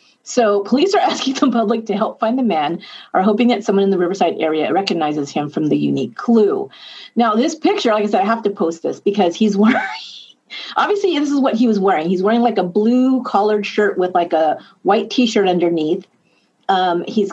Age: 40-59